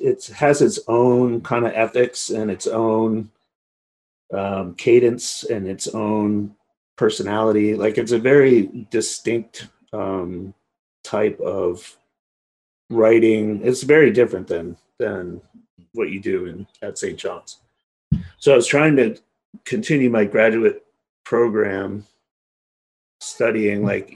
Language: English